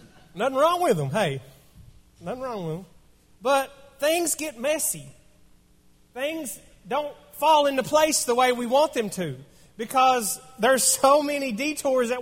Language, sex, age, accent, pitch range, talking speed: English, male, 30-49, American, 180-255 Hz, 145 wpm